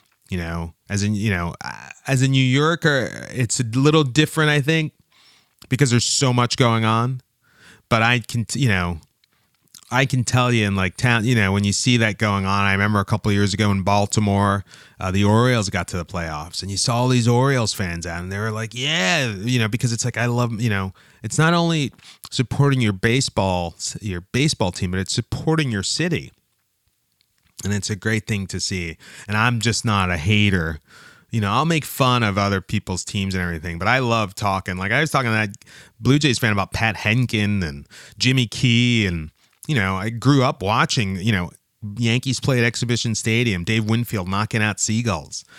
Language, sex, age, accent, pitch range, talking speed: English, male, 30-49, American, 100-125 Hz, 205 wpm